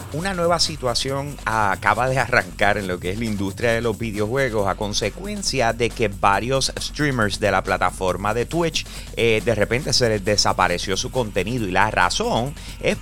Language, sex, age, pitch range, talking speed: Spanish, male, 30-49, 100-130 Hz, 175 wpm